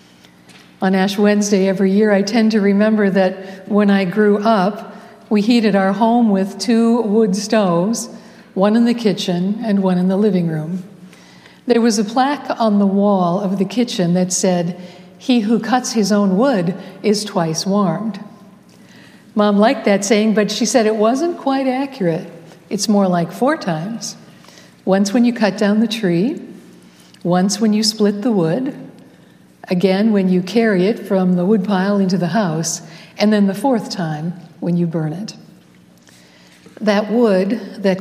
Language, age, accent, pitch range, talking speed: English, 60-79, American, 185-215 Hz, 165 wpm